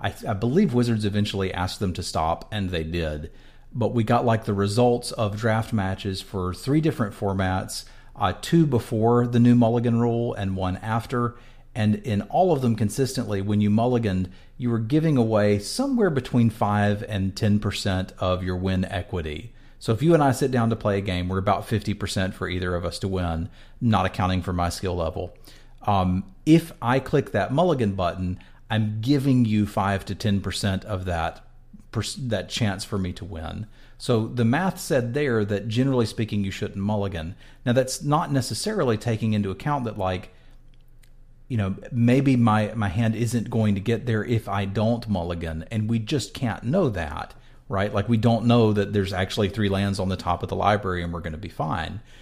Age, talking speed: 40-59, 190 wpm